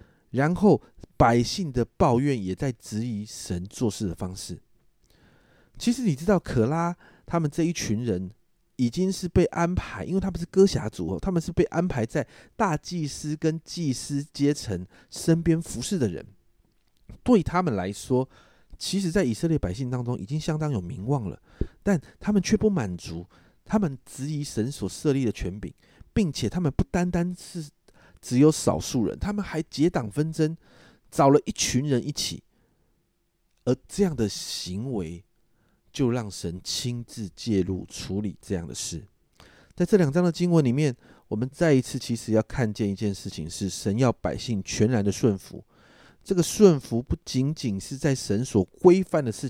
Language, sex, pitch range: Chinese, male, 105-170 Hz